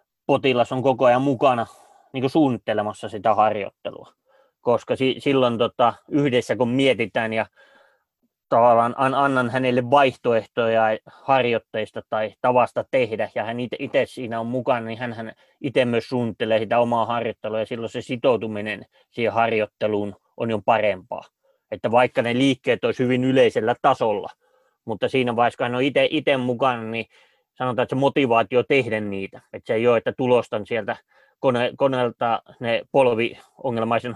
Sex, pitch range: male, 110-130 Hz